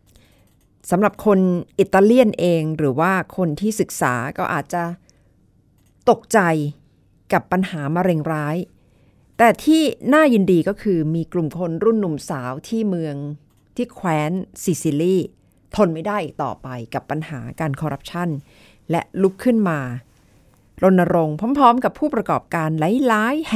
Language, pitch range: Thai, 145-210 Hz